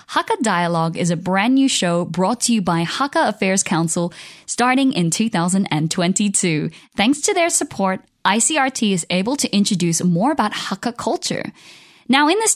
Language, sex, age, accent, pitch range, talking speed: English, female, 10-29, American, 175-240 Hz, 160 wpm